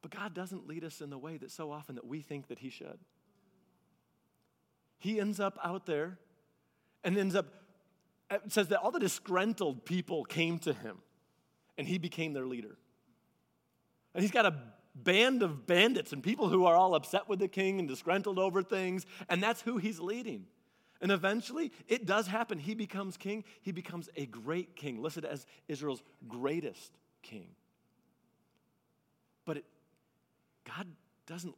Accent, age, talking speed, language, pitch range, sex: American, 40-59, 165 wpm, English, 155-200 Hz, male